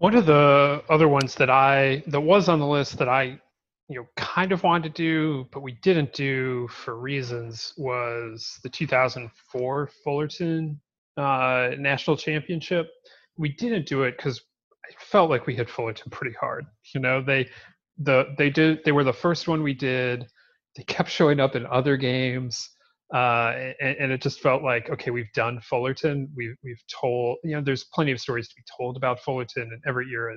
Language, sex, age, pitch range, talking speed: English, male, 30-49, 125-150 Hz, 190 wpm